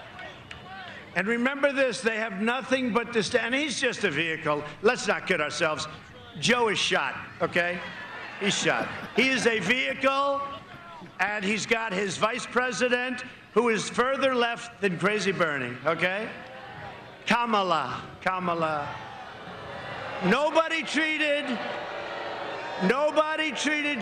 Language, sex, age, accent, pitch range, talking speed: English, male, 50-69, American, 185-245 Hz, 115 wpm